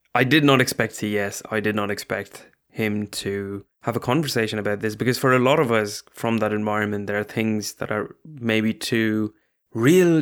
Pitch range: 105-120 Hz